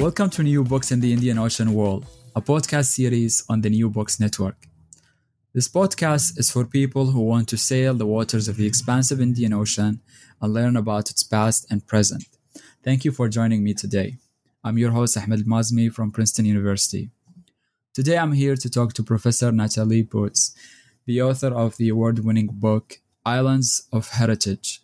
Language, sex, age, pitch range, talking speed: English, male, 20-39, 105-125 Hz, 175 wpm